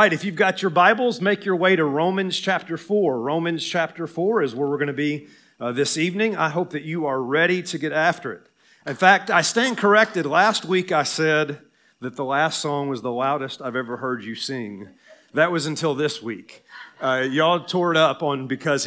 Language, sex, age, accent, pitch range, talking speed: English, male, 40-59, American, 135-185 Hz, 215 wpm